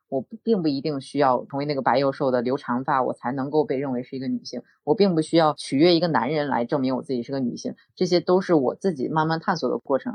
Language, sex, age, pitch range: Chinese, female, 20-39, 135-160 Hz